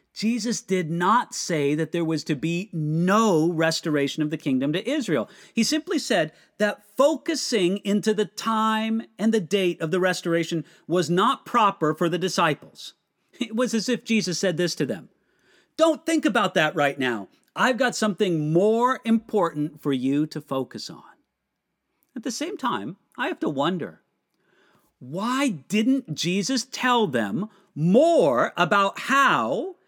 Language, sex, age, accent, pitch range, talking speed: English, male, 50-69, American, 170-260 Hz, 155 wpm